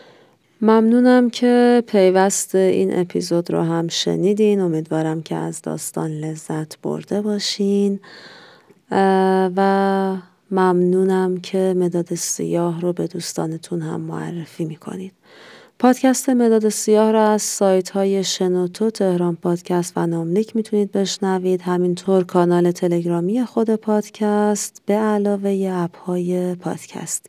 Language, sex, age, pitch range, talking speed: Persian, female, 30-49, 175-205 Hz, 110 wpm